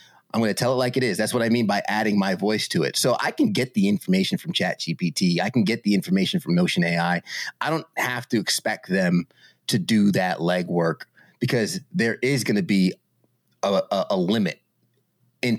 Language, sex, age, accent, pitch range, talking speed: English, male, 30-49, American, 100-160 Hz, 210 wpm